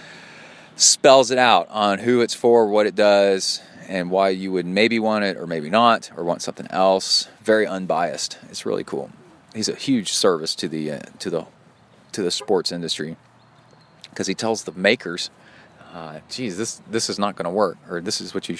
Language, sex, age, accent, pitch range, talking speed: English, male, 30-49, American, 90-125 Hz, 195 wpm